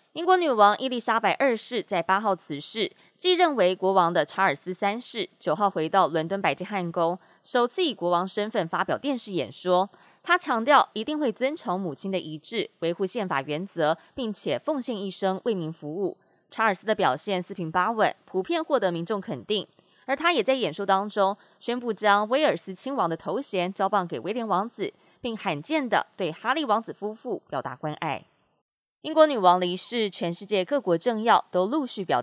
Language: Chinese